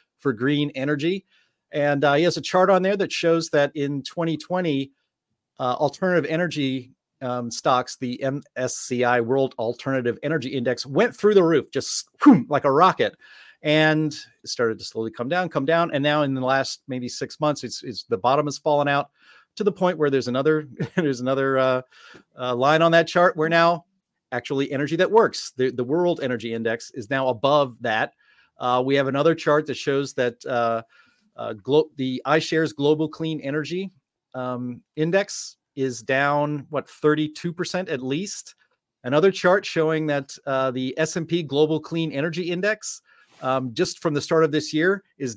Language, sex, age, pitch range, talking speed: English, male, 40-59, 135-170 Hz, 175 wpm